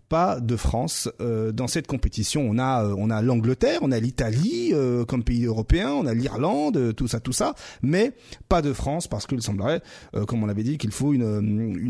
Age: 30-49